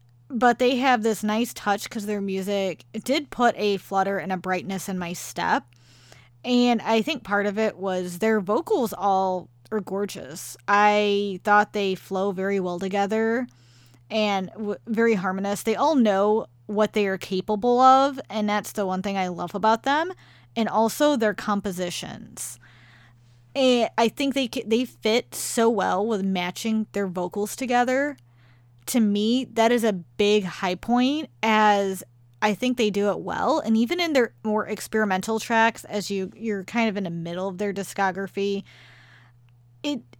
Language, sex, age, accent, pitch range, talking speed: English, female, 20-39, American, 185-225 Hz, 165 wpm